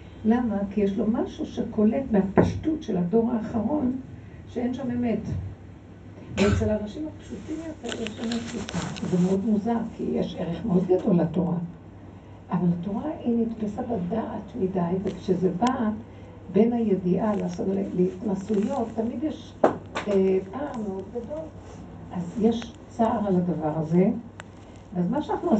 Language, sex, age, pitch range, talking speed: Hebrew, female, 60-79, 170-235 Hz, 130 wpm